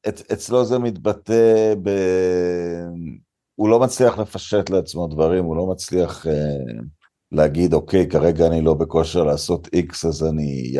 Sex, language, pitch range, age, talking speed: male, Hebrew, 85-115 Hz, 50-69, 140 wpm